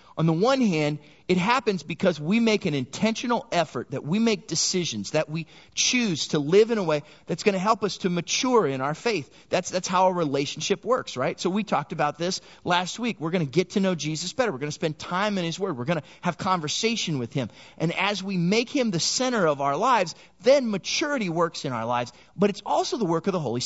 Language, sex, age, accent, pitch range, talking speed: English, male, 30-49, American, 155-215 Hz, 240 wpm